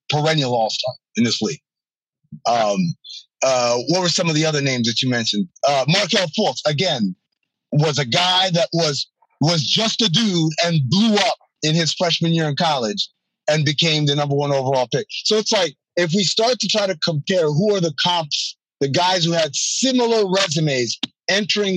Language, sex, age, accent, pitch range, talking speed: English, male, 30-49, American, 145-200 Hz, 185 wpm